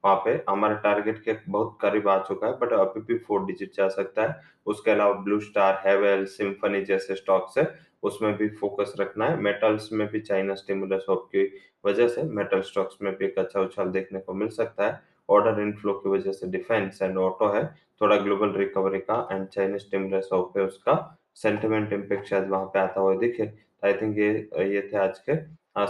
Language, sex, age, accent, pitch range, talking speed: English, male, 20-39, Indian, 95-110 Hz, 135 wpm